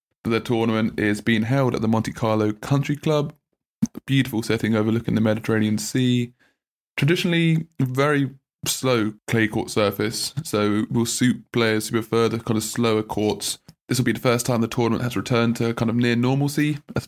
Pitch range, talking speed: 115-135 Hz, 180 wpm